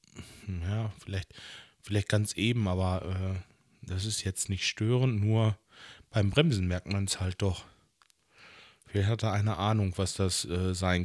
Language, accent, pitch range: German, German, 90-110 Hz